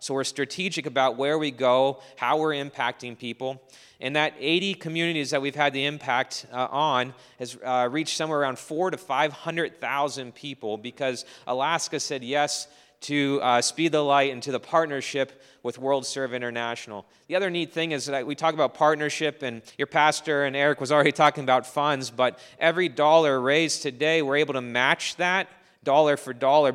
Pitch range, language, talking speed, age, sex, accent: 135-160 Hz, English, 180 wpm, 30-49, male, American